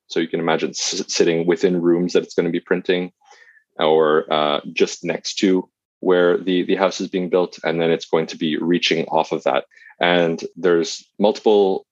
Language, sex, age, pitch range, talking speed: English, male, 20-39, 75-90 Hz, 190 wpm